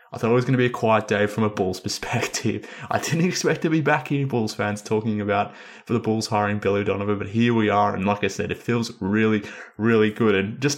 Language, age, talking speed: English, 20-39, 255 wpm